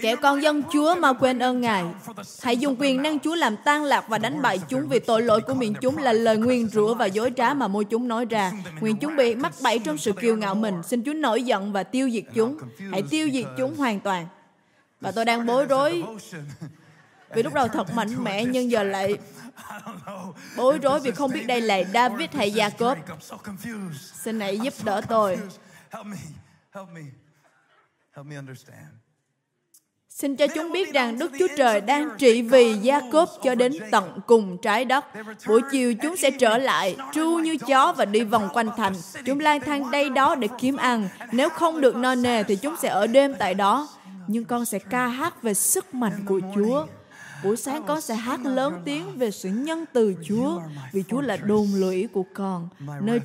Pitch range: 200-275 Hz